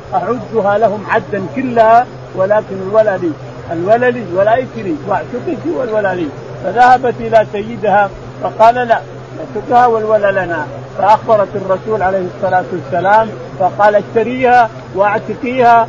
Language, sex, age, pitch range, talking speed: Arabic, male, 50-69, 200-235 Hz, 105 wpm